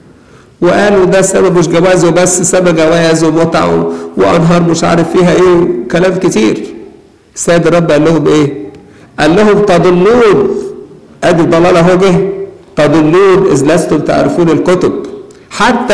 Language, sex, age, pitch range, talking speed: Arabic, male, 50-69, 135-190 Hz, 130 wpm